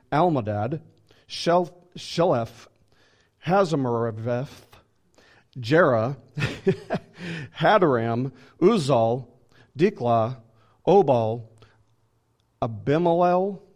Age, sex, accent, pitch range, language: 40-59, male, American, 115-155 Hz, English